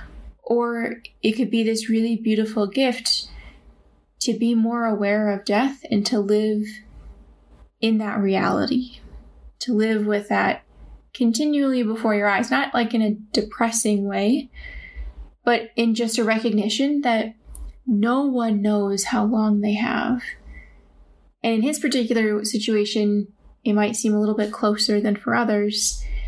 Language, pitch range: English, 165-230 Hz